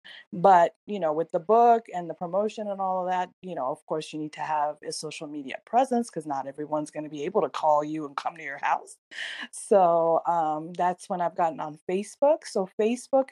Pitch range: 160-205 Hz